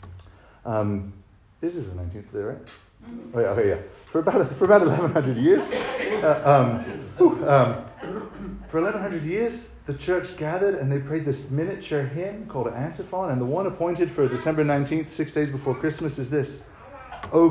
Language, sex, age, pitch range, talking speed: English, male, 40-59, 105-165 Hz, 165 wpm